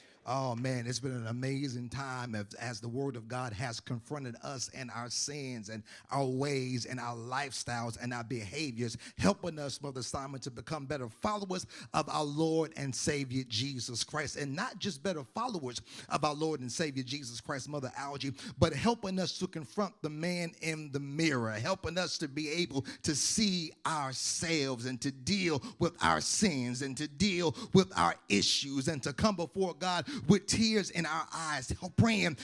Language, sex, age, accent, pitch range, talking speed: English, male, 40-59, American, 140-205 Hz, 180 wpm